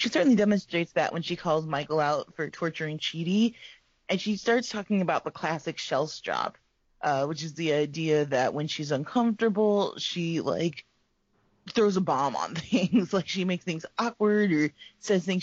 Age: 20-39